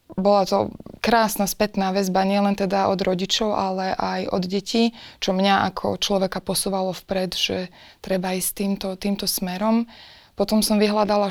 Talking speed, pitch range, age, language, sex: 150 wpm, 185-200 Hz, 20-39, Slovak, female